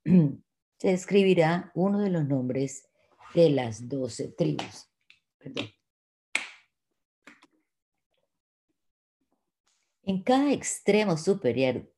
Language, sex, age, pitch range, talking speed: Spanish, female, 40-59, 125-190 Hz, 75 wpm